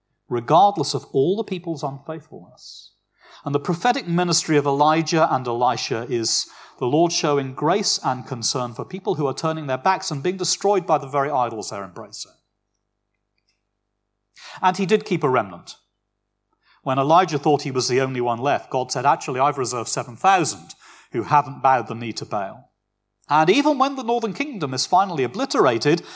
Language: English